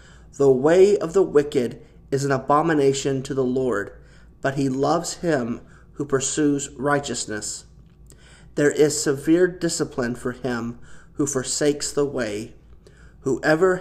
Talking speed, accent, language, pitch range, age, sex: 125 wpm, American, English, 130-155 Hz, 40-59, male